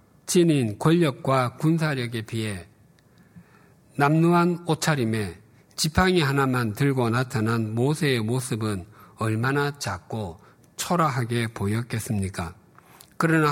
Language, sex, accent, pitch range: Korean, male, native, 115-160 Hz